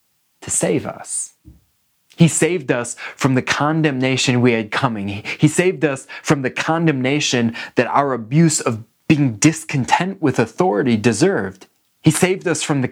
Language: English